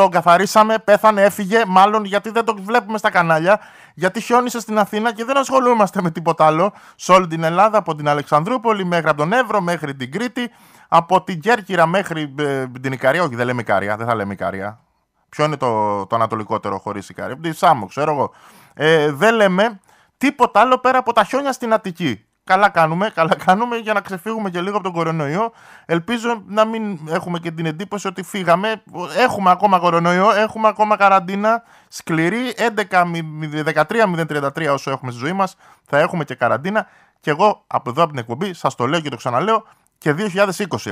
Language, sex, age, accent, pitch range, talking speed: Greek, male, 20-39, native, 160-215 Hz, 180 wpm